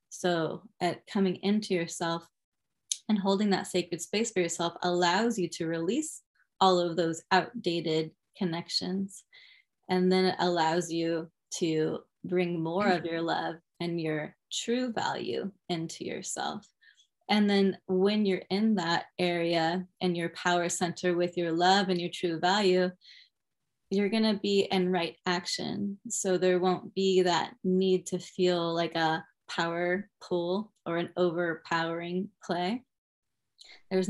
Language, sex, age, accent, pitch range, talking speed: English, female, 20-39, American, 170-190 Hz, 140 wpm